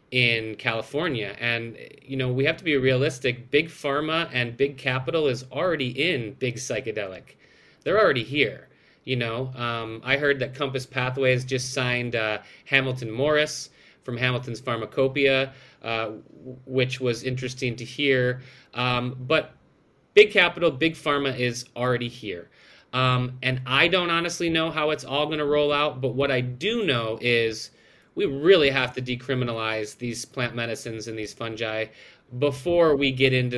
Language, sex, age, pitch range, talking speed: English, male, 30-49, 120-145 Hz, 160 wpm